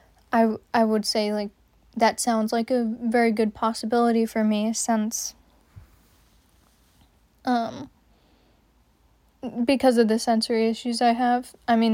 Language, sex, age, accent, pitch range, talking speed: English, female, 10-29, American, 220-240 Hz, 125 wpm